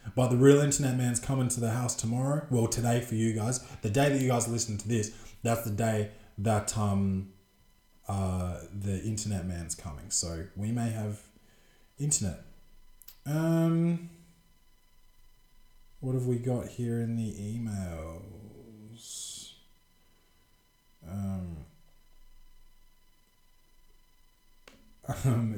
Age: 20-39